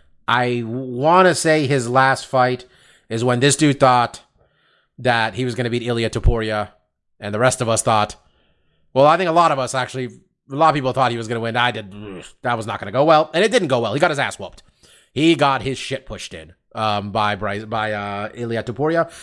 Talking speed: 235 wpm